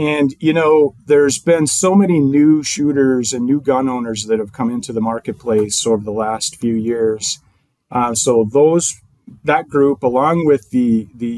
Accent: American